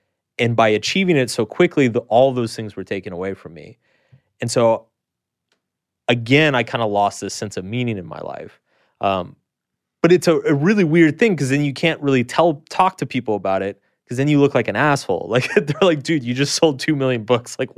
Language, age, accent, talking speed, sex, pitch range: English, 30-49, American, 225 wpm, male, 105-140 Hz